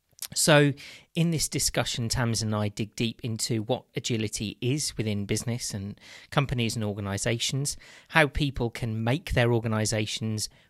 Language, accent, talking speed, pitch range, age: English, British, 140 wpm, 105-135 Hz, 40-59